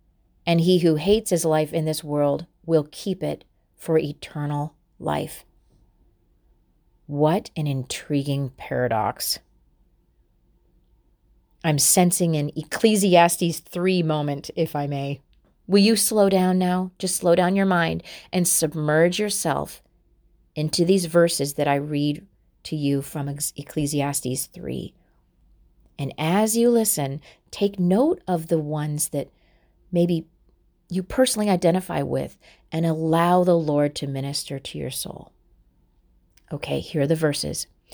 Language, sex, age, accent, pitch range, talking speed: English, female, 40-59, American, 140-175 Hz, 130 wpm